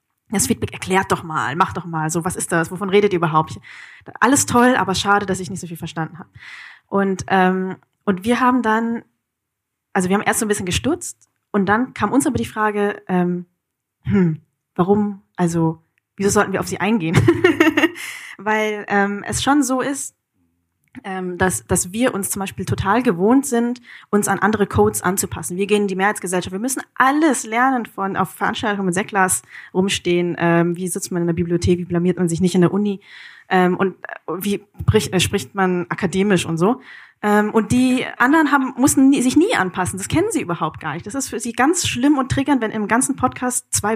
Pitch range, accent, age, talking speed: 180-230 Hz, German, 20-39, 200 wpm